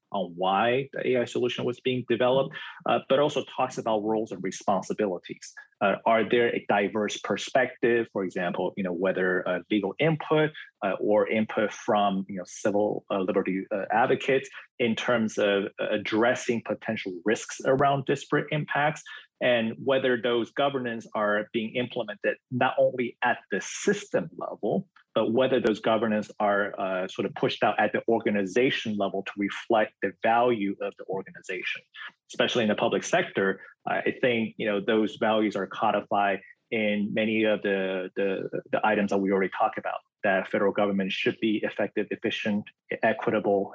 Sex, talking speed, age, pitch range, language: male, 155 wpm, 30-49, 100-120 Hz, English